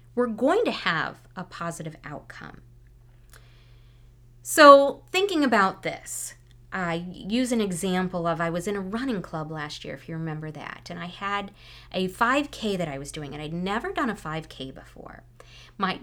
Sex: female